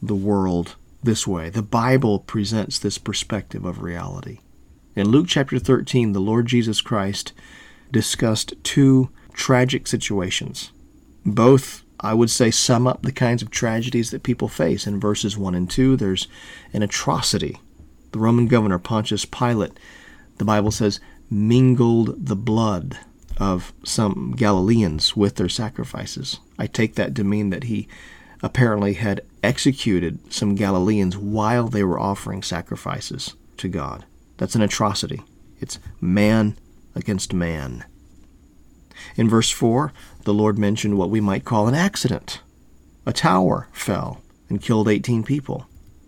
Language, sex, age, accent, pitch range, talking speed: English, male, 40-59, American, 95-120 Hz, 140 wpm